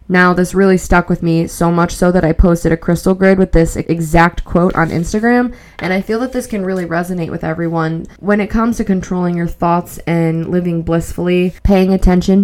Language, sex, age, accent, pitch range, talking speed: English, female, 20-39, American, 165-185 Hz, 205 wpm